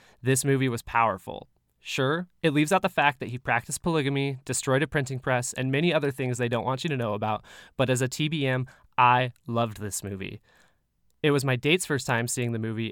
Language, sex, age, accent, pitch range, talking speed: English, male, 20-39, American, 120-150 Hz, 215 wpm